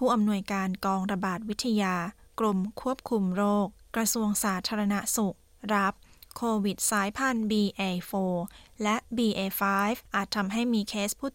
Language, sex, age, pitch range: Thai, female, 20-39, 190-225 Hz